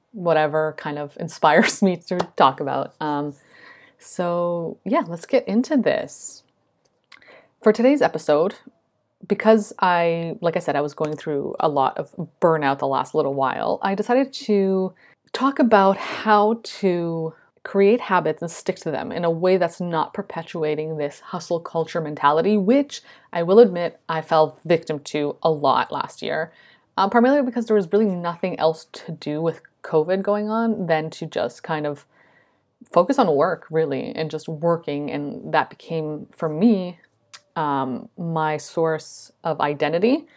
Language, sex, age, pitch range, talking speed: English, female, 30-49, 160-210 Hz, 160 wpm